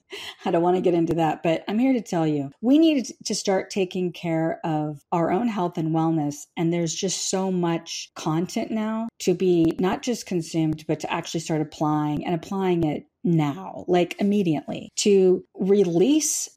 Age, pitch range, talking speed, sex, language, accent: 40-59, 160-200 Hz, 180 wpm, female, English, American